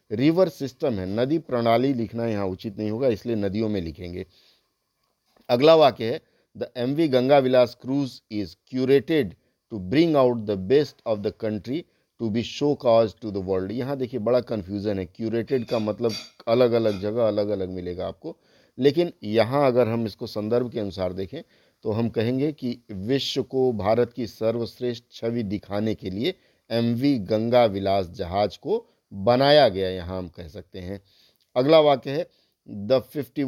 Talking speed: 165 wpm